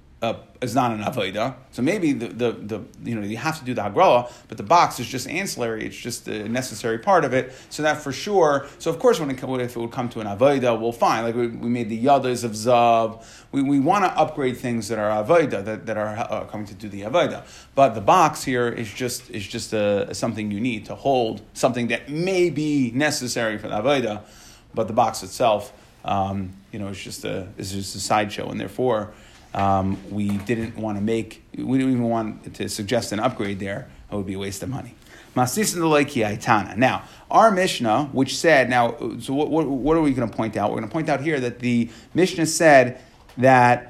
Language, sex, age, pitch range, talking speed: English, male, 30-49, 110-145 Hz, 220 wpm